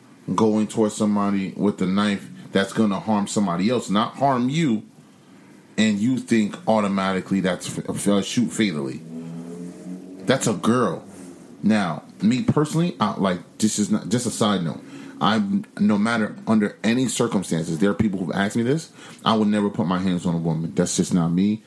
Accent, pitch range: American, 95-110 Hz